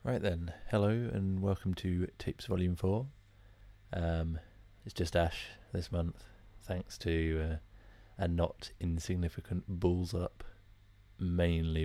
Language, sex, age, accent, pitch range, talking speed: English, male, 30-49, British, 85-105 Hz, 120 wpm